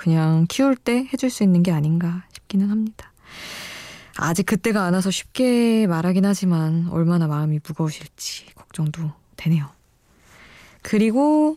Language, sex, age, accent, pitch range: Korean, female, 20-39, native, 160-225 Hz